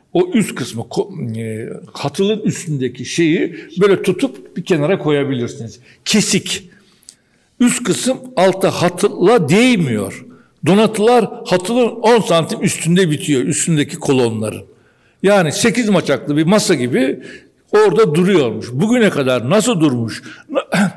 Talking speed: 105 wpm